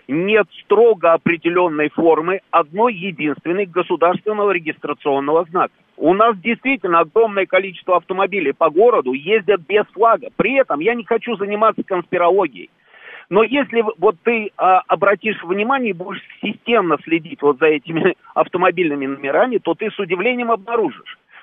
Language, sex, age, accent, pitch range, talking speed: Russian, male, 50-69, native, 155-220 Hz, 135 wpm